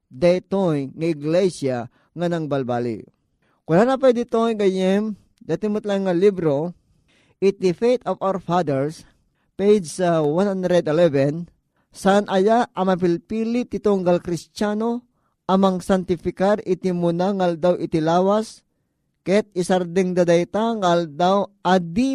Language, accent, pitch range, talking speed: Filipino, native, 165-205 Hz, 110 wpm